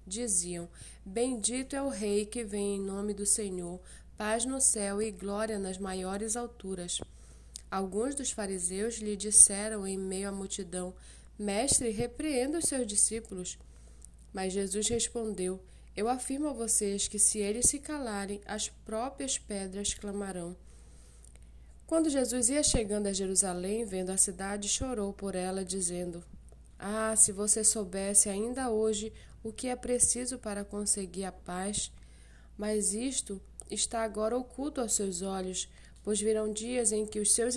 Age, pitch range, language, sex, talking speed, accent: 20-39, 185-225 Hz, Portuguese, female, 145 wpm, Brazilian